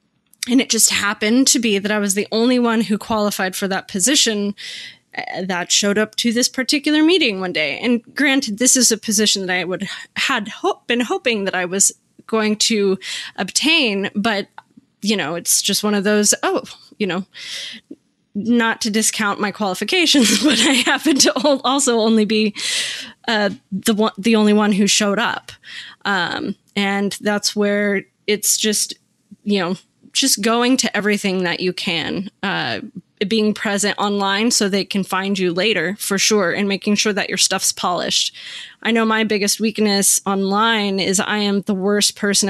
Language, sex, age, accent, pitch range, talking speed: English, female, 20-39, American, 200-240 Hz, 175 wpm